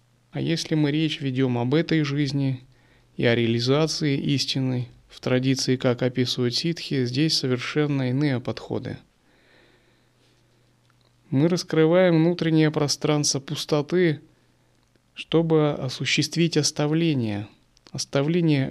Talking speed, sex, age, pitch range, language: 95 wpm, male, 30-49, 115-150 Hz, Russian